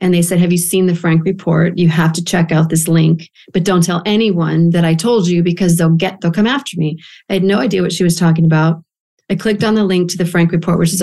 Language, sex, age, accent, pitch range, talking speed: English, female, 40-59, American, 170-195 Hz, 270 wpm